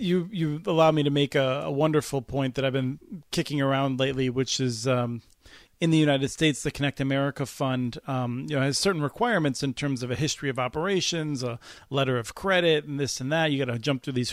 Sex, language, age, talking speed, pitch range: male, English, 40-59, 220 wpm, 135-175 Hz